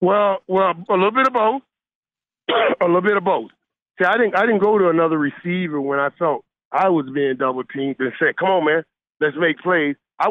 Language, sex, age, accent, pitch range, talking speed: English, male, 40-59, American, 170-215 Hz, 220 wpm